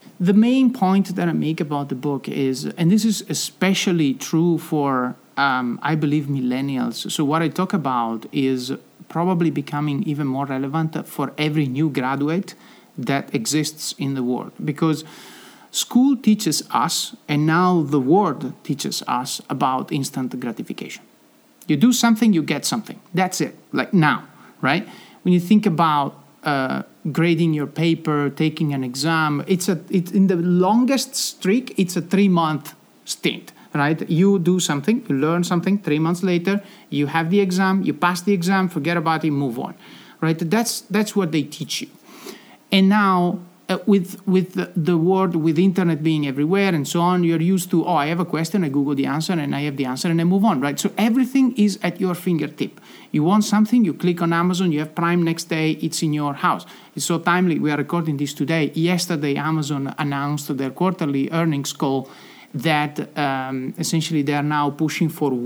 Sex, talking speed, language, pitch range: male, 180 wpm, English, 150-190 Hz